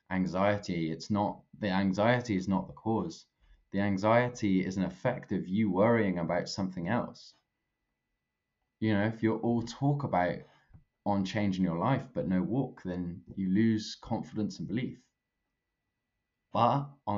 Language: English